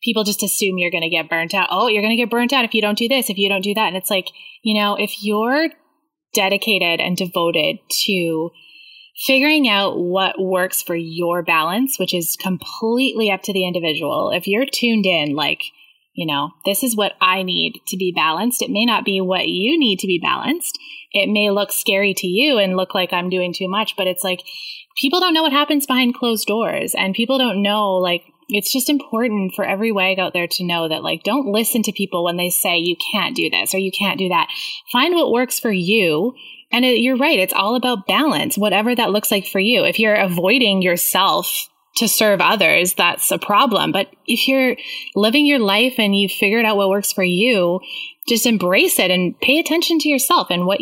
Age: 20-39